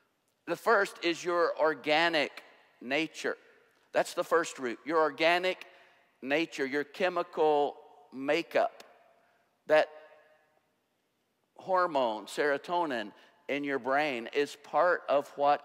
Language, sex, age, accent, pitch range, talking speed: English, male, 50-69, American, 135-160 Hz, 100 wpm